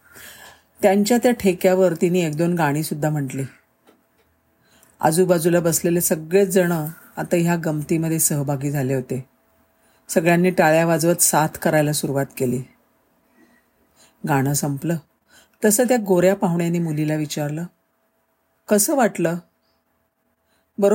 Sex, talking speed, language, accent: female, 90 wpm, Marathi, native